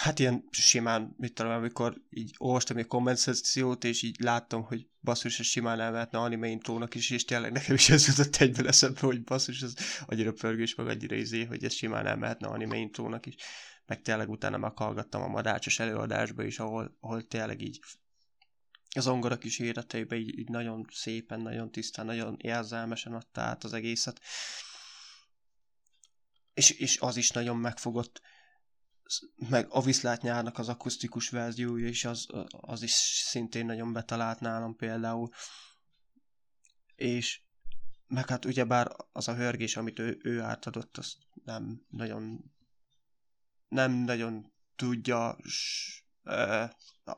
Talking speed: 140 wpm